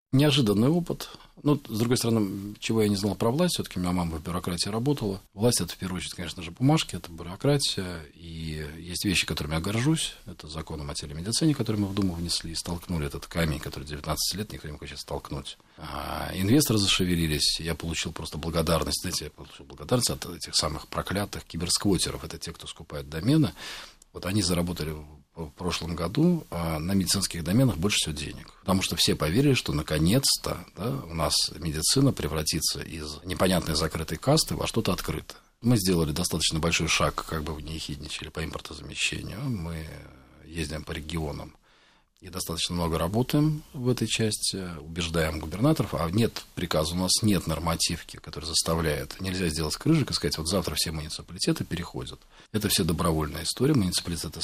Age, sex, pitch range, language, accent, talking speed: 40-59, male, 80-105 Hz, Russian, native, 175 wpm